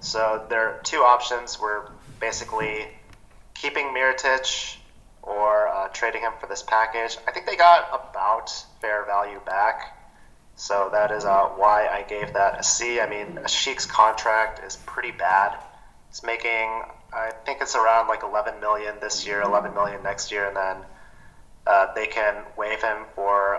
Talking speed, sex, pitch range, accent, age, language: 165 wpm, male, 105-120 Hz, American, 30-49, English